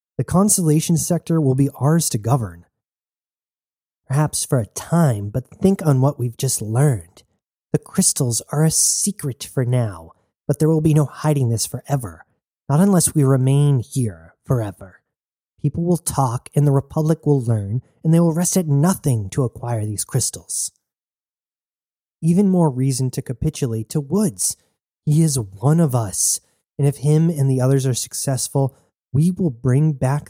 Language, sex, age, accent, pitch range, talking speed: English, male, 30-49, American, 120-155 Hz, 160 wpm